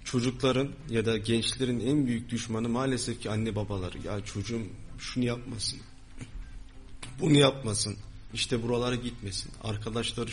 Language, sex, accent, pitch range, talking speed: Turkish, male, native, 110-130 Hz, 120 wpm